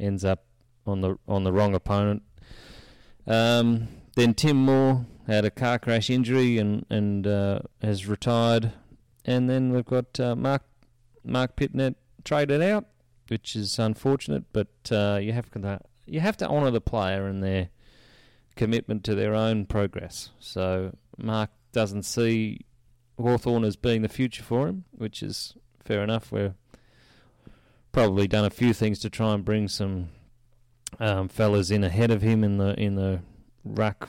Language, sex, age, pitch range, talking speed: English, male, 30-49, 100-120 Hz, 160 wpm